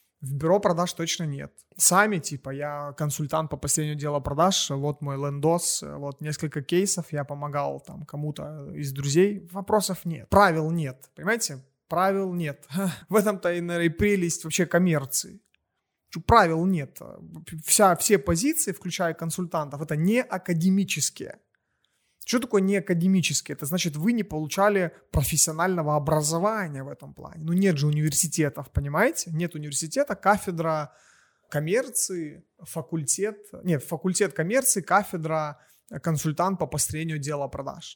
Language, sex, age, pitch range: Russian, male, 30-49, 150-190 Hz